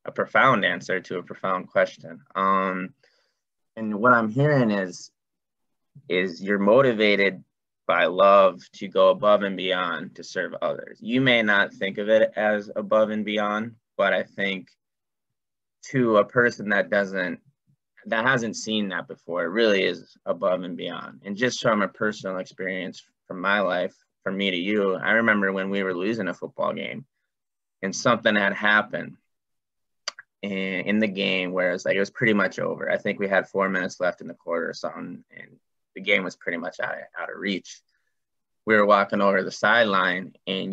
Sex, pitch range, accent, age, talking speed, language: male, 95-110 Hz, American, 20-39, 180 wpm, English